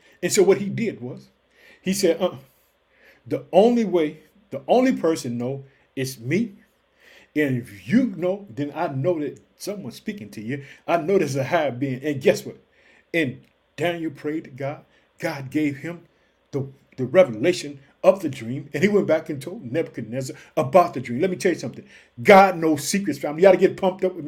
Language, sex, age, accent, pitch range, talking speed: English, male, 50-69, American, 155-220 Hz, 195 wpm